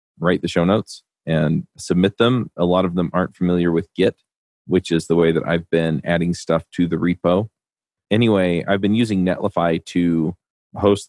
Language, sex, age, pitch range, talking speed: English, male, 30-49, 85-100 Hz, 185 wpm